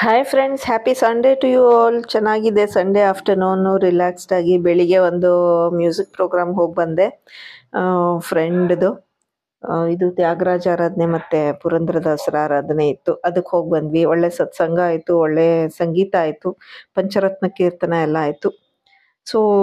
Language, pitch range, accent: Kannada, 175-220 Hz, native